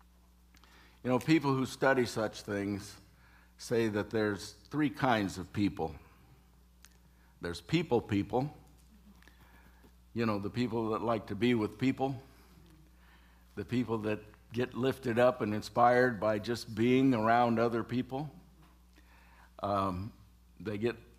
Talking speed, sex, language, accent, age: 125 wpm, male, English, American, 60-79